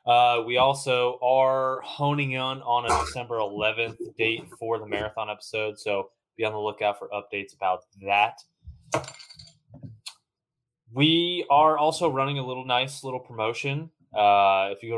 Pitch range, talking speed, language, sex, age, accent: 105-125 Hz, 150 wpm, English, male, 20-39, American